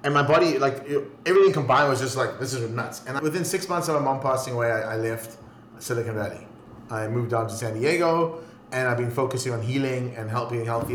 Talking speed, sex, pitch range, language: 230 wpm, male, 110-140 Hz, English